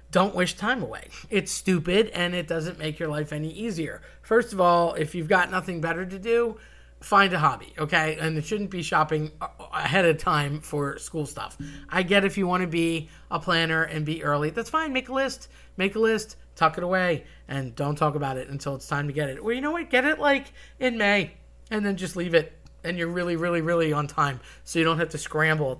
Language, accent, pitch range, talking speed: English, American, 150-185 Hz, 235 wpm